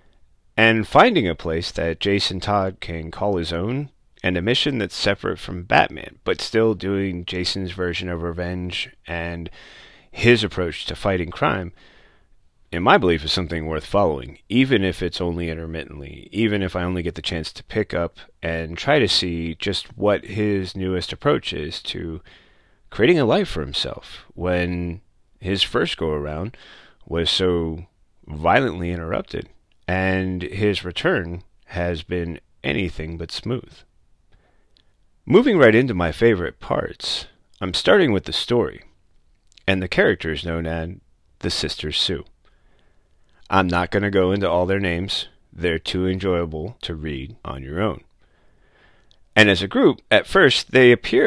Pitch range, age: 85-100 Hz, 30-49